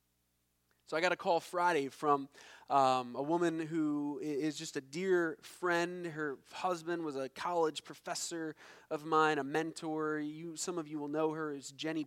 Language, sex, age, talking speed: English, male, 20-39, 175 wpm